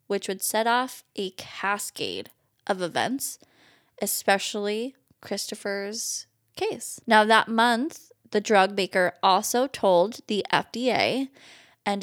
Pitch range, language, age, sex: 195-260 Hz, English, 20-39, female